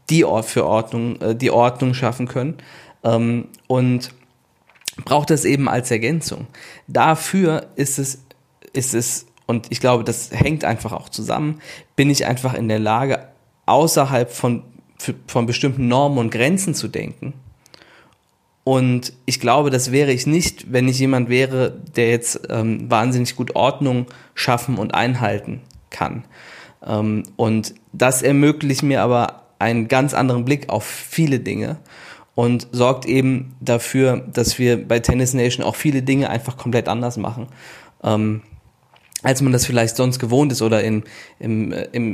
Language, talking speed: German, 150 wpm